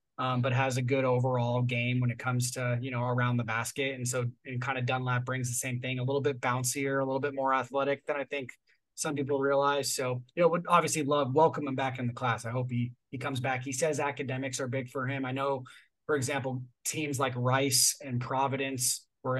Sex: male